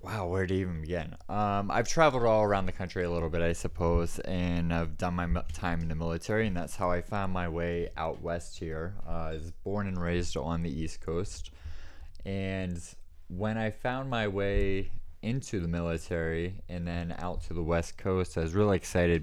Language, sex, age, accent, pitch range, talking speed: English, male, 20-39, American, 80-95 Hz, 205 wpm